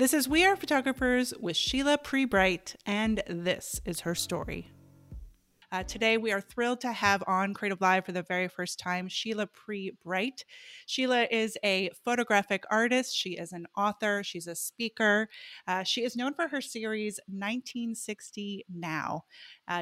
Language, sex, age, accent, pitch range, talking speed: English, female, 30-49, American, 190-240 Hz, 155 wpm